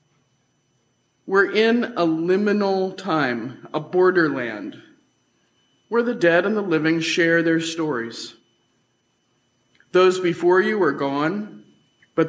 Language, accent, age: English, American, 50-69